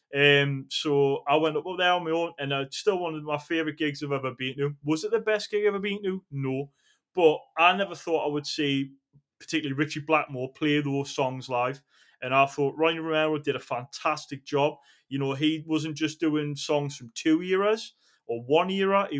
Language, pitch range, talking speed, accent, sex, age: English, 140-160 Hz, 210 wpm, British, male, 20-39